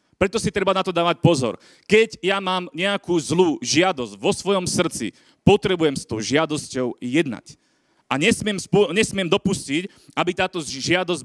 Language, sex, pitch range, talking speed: Slovak, male, 155-195 Hz, 155 wpm